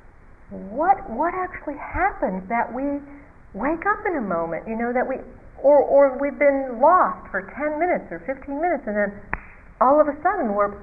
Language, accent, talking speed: English, American, 185 wpm